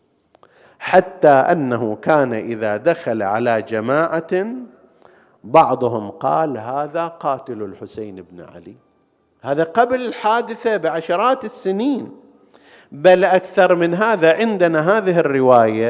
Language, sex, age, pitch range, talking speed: Arabic, male, 50-69, 135-180 Hz, 100 wpm